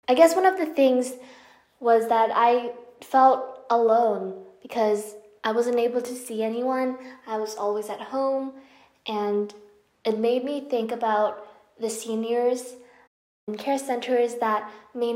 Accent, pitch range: American, 215-245 Hz